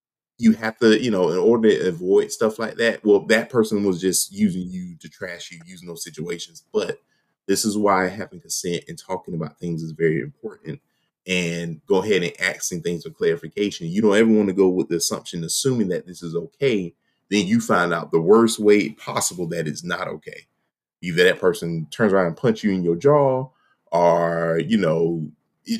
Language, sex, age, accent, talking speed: English, male, 20-39, American, 200 wpm